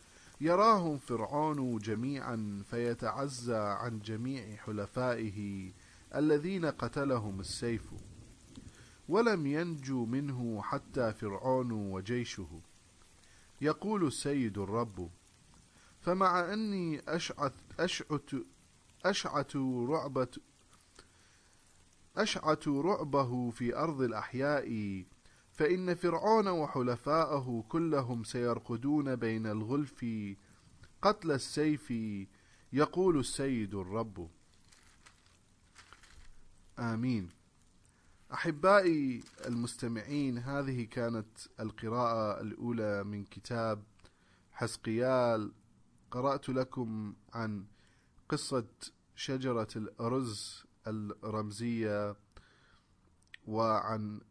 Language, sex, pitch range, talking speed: English, male, 105-140 Hz, 65 wpm